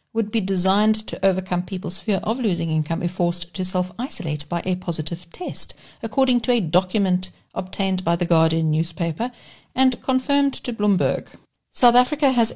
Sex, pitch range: female, 170-215 Hz